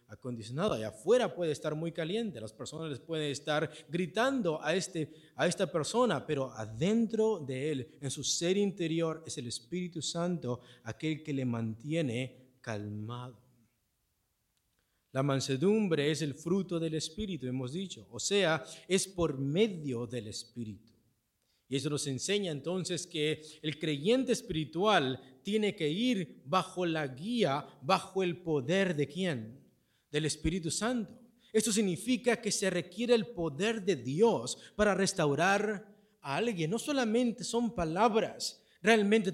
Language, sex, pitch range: Spanish, male, 145-205 Hz